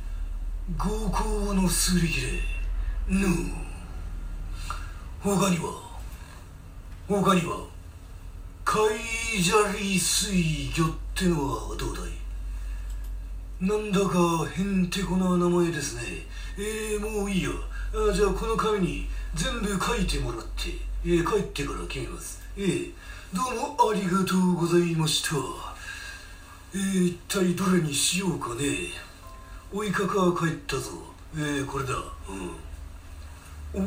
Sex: male